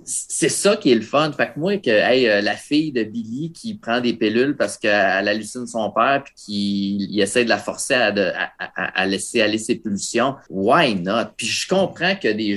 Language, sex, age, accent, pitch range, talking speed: French, male, 30-49, Canadian, 105-125 Hz, 215 wpm